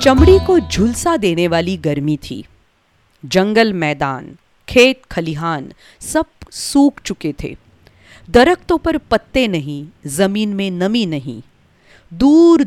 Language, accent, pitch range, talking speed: English, Indian, 155-245 Hz, 115 wpm